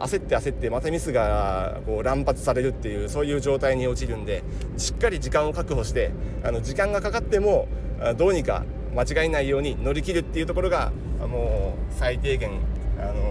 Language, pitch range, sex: Japanese, 105-145 Hz, male